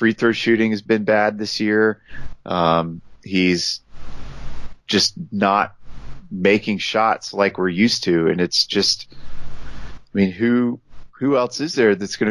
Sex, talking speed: male, 145 wpm